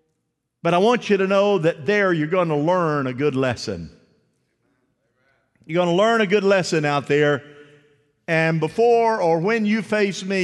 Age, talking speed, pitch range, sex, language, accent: 50-69, 180 wpm, 135-175 Hz, male, English, American